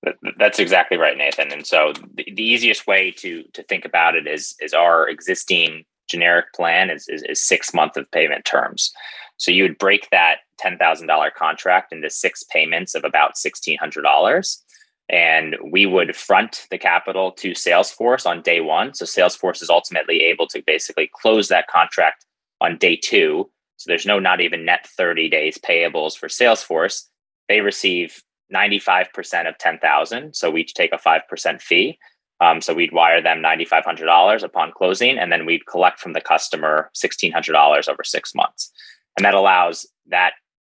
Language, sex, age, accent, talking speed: English, male, 20-39, American, 165 wpm